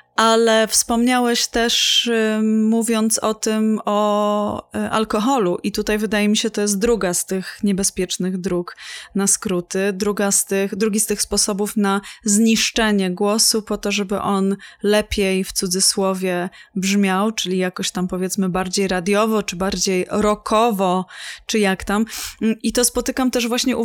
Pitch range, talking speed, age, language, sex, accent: 195-225 Hz, 150 wpm, 20-39, Polish, female, native